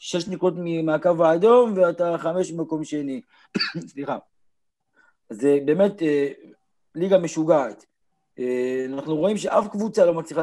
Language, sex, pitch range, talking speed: Hebrew, male, 155-205 Hz, 120 wpm